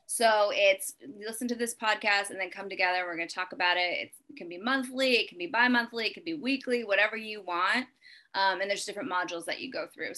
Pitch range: 195-275 Hz